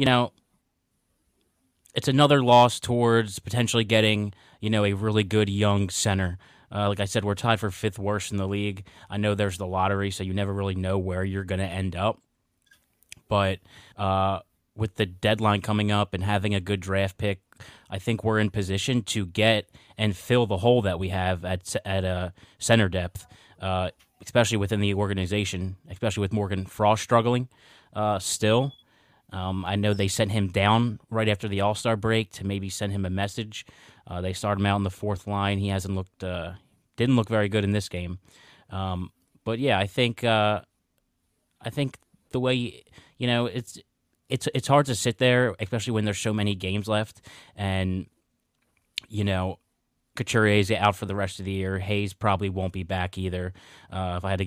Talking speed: 190 wpm